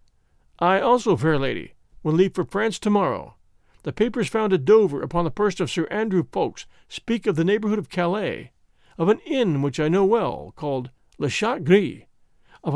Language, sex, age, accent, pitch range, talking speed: English, male, 50-69, American, 155-215 Hz, 190 wpm